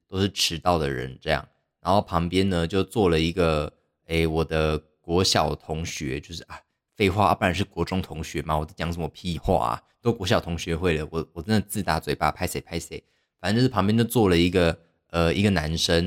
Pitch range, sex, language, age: 80-105 Hz, male, Chinese, 20-39